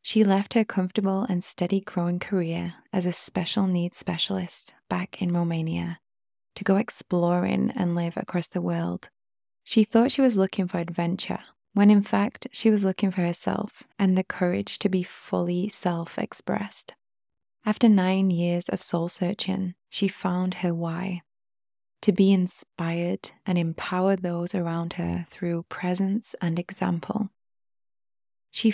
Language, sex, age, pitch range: English, female, 20-39, 175-200 Hz